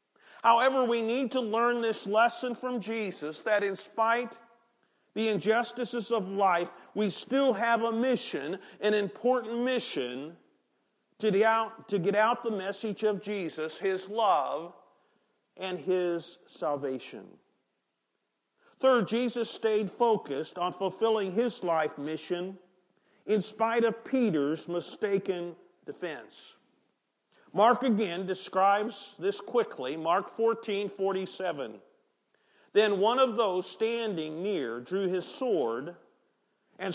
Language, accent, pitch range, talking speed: English, American, 185-235 Hz, 110 wpm